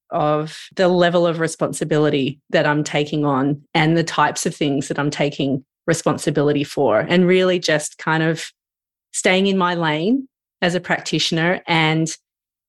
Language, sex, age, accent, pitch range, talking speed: English, female, 30-49, Australian, 155-205 Hz, 150 wpm